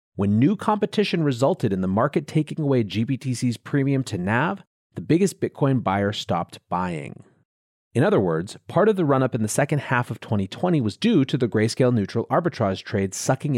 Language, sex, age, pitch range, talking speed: English, male, 30-49, 105-145 Hz, 180 wpm